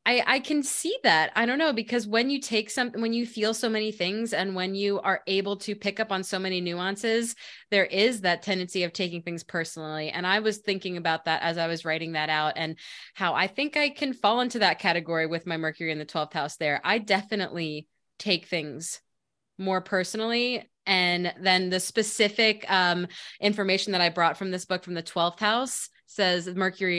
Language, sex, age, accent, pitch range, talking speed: English, female, 20-39, American, 175-215 Hz, 205 wpm